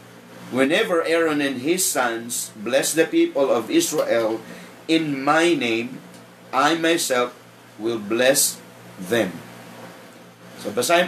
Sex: male